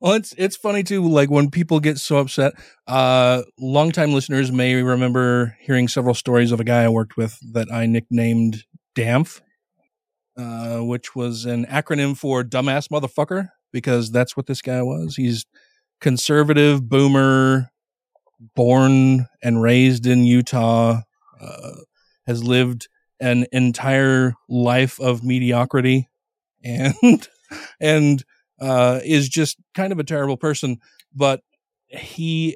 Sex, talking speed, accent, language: male, 135 wpm, American, English